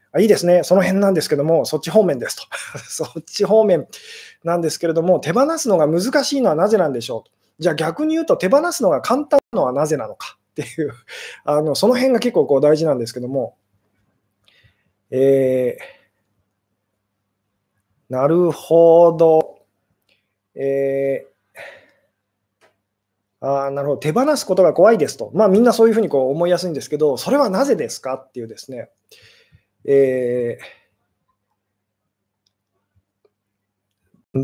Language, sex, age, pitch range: Japanese, male, 20-39, 135-210 Hz